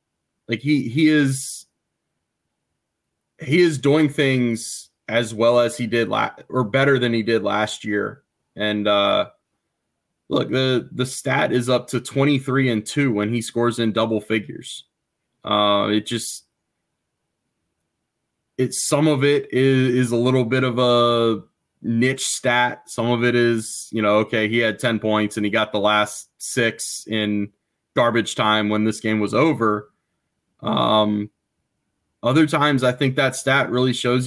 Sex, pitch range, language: male, 110-130 Hz, English